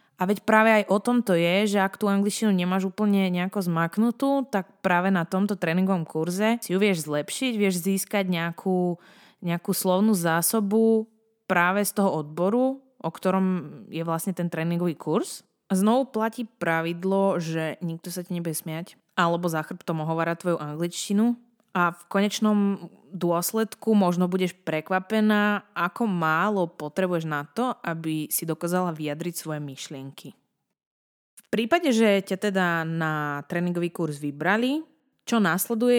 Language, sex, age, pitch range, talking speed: Slovak, female, 20-39, 170-215 Hz, 145 wpm